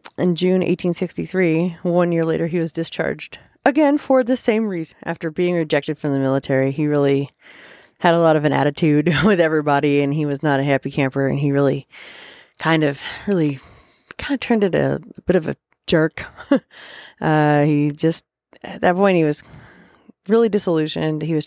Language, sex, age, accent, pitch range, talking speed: English, female, 30-49, American, 150-195 Hz, 180 wpm